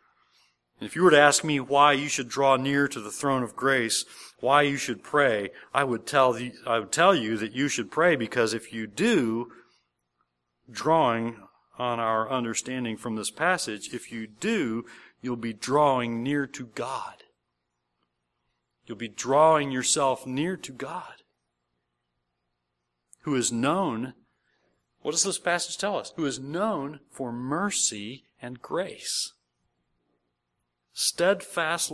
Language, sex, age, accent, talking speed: English, male, 40-59, American, 145 wpm